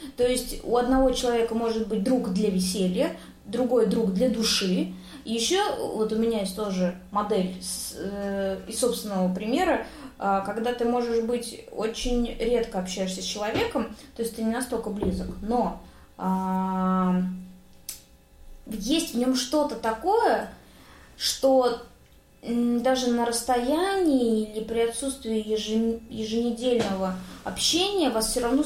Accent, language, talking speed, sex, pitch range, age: native, Russian, 130 wpm, female, 205-250 Hz, 20-39